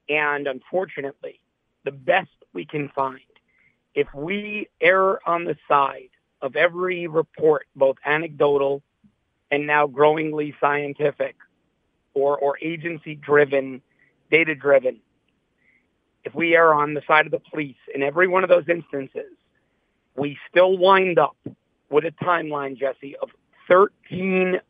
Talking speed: 125 wpm